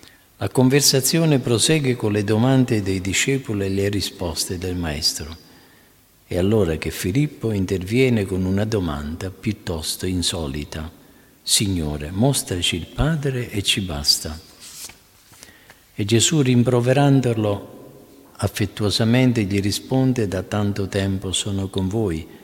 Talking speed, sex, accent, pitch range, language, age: 110 wpm, male, native, 90-125 Hz, Italian, 50-69